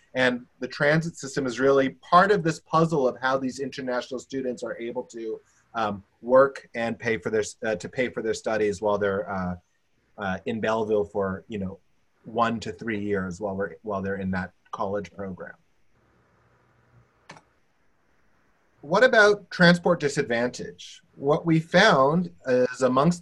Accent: American